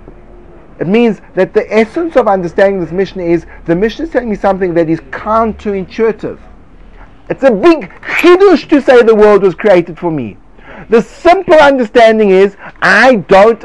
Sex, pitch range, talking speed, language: male, 180-245 Hz, 165 wpm, English